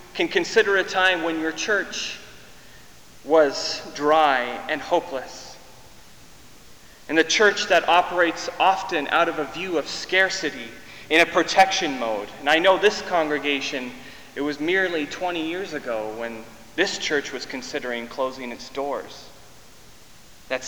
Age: 30-49